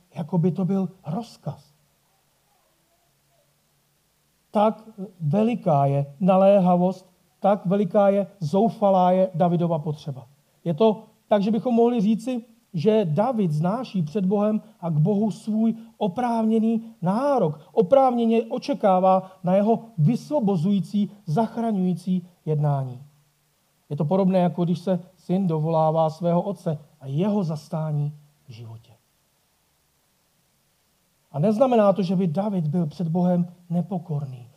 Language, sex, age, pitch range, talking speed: Czech, male, 40-59, 150-195 Hz, 115 wpm